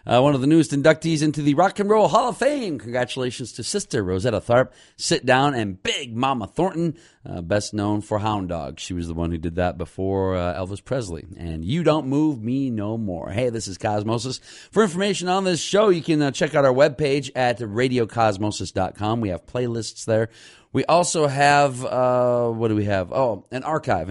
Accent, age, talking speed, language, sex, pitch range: American, 40-59, 205 wpm, English, male, 100-130 Hz